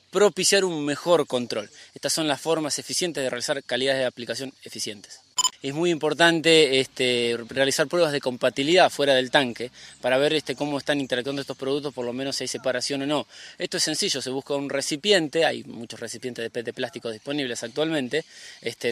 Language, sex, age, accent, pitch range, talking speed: Spanish, male, 20-39, Argentinian, 130-170 Hz, 185 wpm